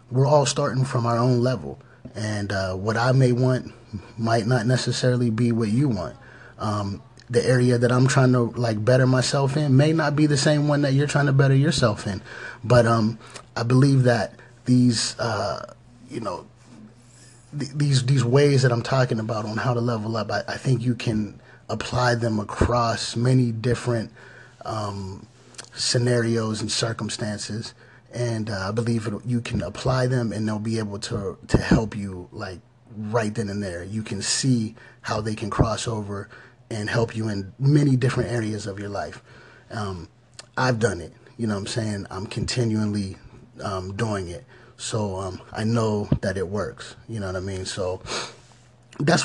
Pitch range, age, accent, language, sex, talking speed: 110-125 Hz, 30-49, American, English, male, 180 wpm